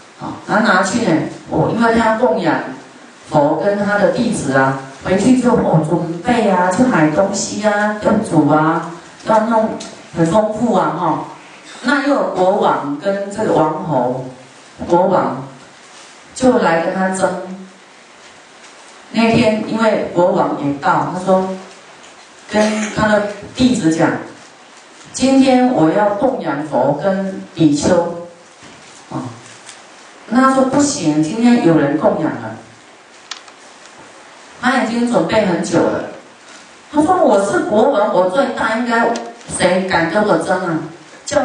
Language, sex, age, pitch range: Chinese, female, 40-59, 165-235 Hz